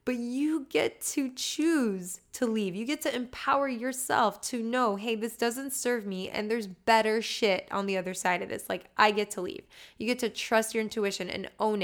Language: English